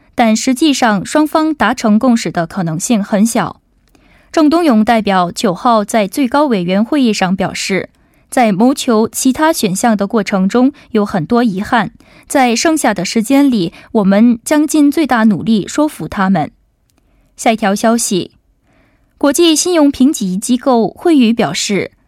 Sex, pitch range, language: female, 210-275 Hz, Korean